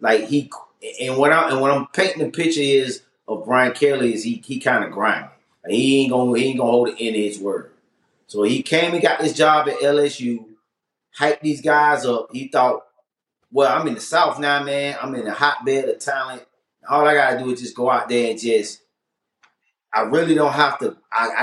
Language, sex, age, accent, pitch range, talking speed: English, male, 30-49, American, 125-155 Hz, 220 wpm